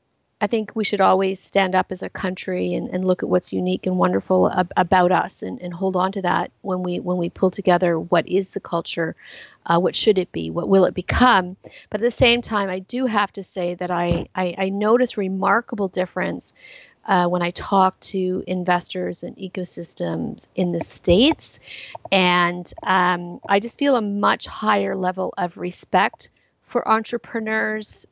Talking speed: 185 wpm